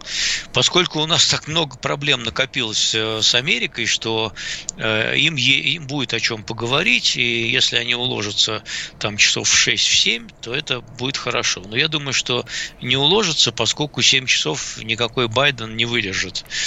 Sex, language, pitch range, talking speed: male, Russian, 105-135 Hz, 150 wpm